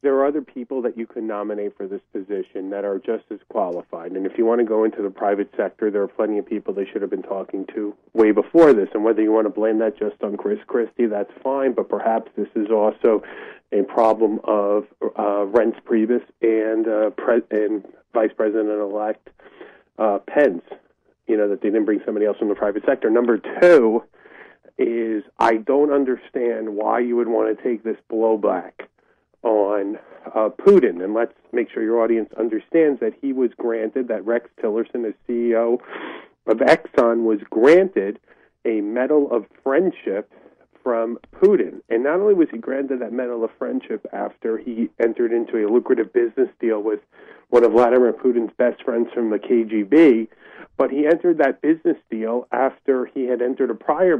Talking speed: 185 wpm